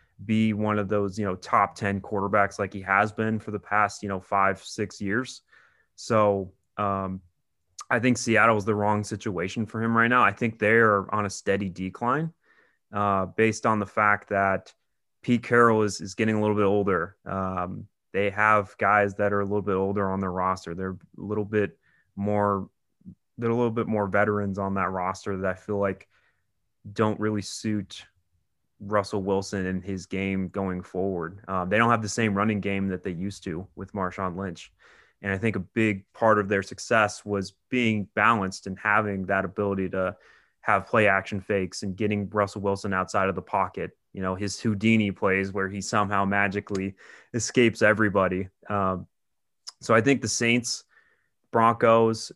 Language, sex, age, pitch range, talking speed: English, male, 20-39, 95-110 Hz, 180 wpm